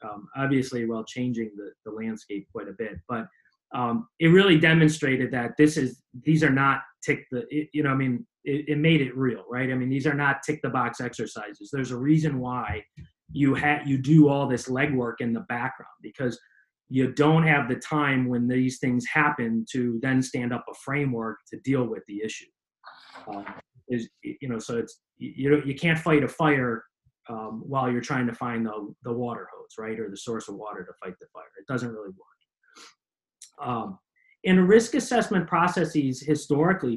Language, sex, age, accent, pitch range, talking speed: English, male, 30-49, American, 115-145 Hz, 195 wpm